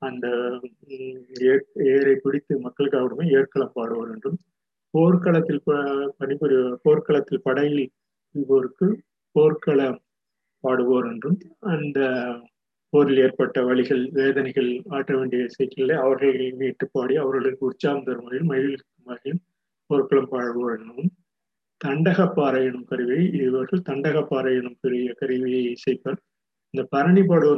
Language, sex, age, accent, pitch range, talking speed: Tamil, male, 30-49, native, 130-150 Hz, 85 wpm